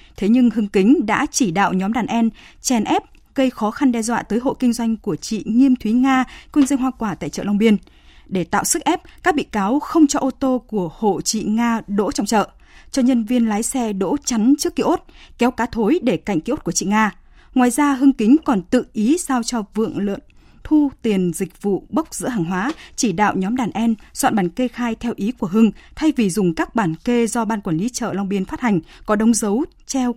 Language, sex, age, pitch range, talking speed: Vietnamese, female, 20-39, 205-260 Hz, 245 wpm